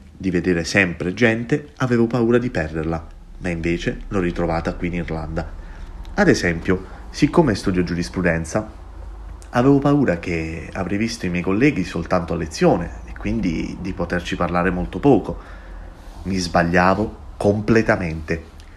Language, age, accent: Italian, 30-49, native